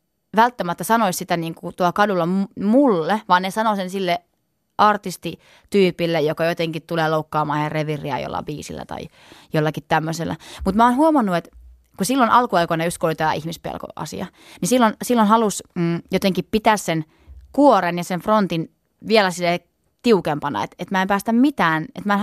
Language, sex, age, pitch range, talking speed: Finnish, female, 20-39, 165-220 Hz, 160 wpm